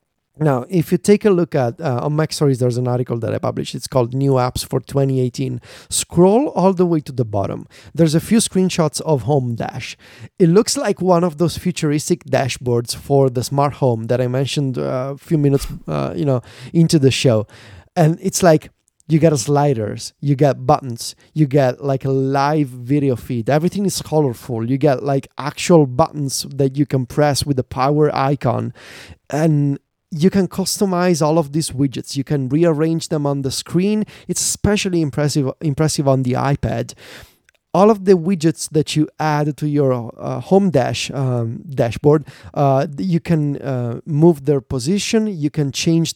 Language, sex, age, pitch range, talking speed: English, male, 30-49, 130-165 Hz, 185 wpm